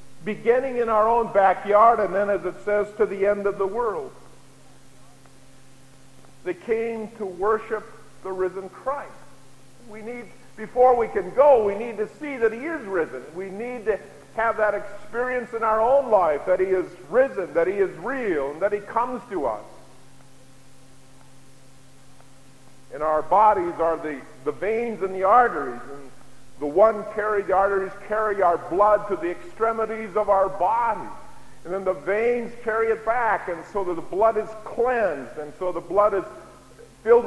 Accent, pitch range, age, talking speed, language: American, 180-235 Hz, 50-69, 170 wpm, English